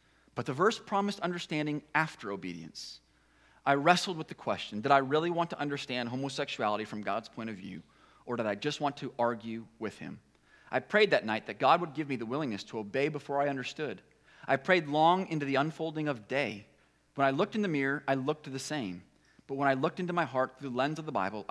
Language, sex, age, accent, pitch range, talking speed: English, male, 30-49, American, 110-150 Hz, 225 wpm